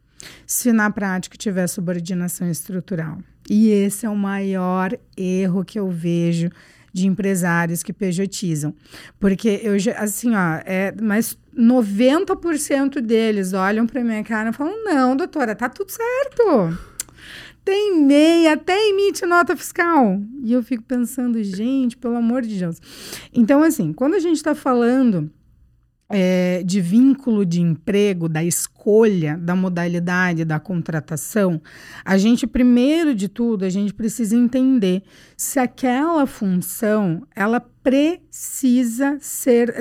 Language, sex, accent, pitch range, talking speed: Portuguese, female, Brazilian, 190-255 Hz, 130 wpm